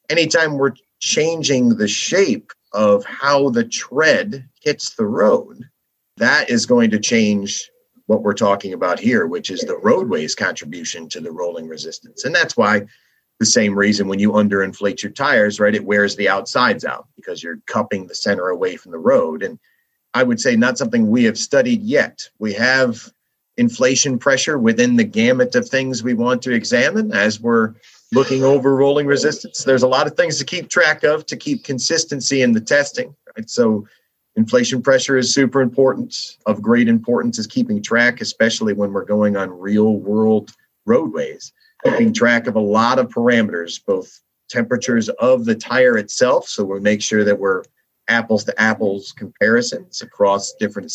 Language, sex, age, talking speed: English, male, 40-59, 170 wpm